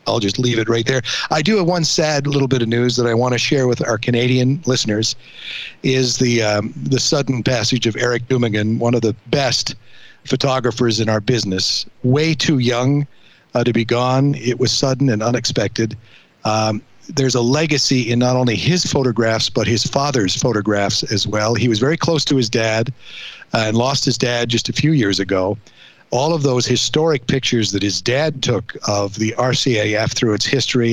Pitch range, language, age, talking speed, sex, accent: 110-130 Hz, English, 50-69, 195 wpm, male, American